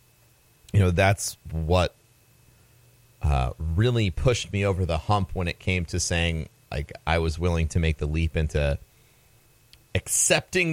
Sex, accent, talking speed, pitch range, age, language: male, American, 145 wpm, 90-120 Hz, 30-49, English